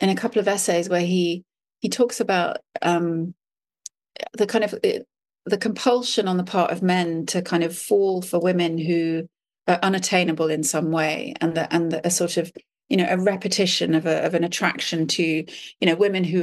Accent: British